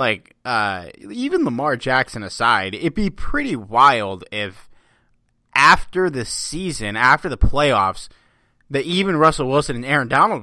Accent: American